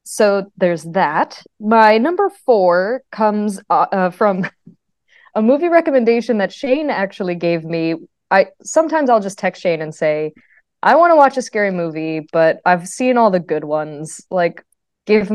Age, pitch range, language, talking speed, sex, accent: 20-39, 165-215 Hz, English, 165 wpm, female, American